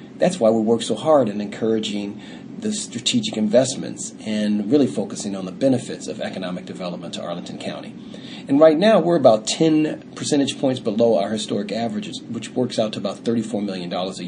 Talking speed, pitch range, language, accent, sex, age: 180 wpm, 105-140 Hz, English, American, male, 40-59